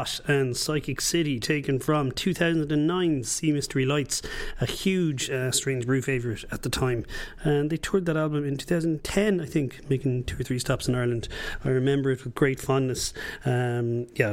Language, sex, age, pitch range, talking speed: English, male, 30-49, 125-150 Hz, 175 wpm